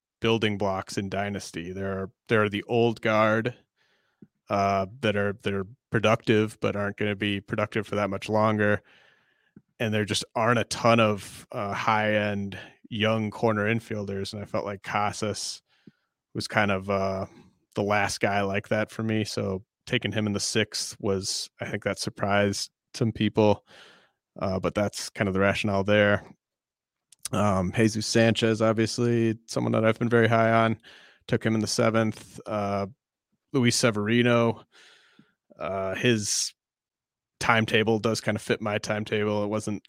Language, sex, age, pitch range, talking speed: English, male, 20-39, 100-110 Hz, 160 wpm